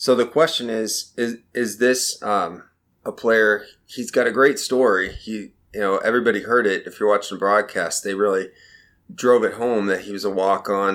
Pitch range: 100-130 Hz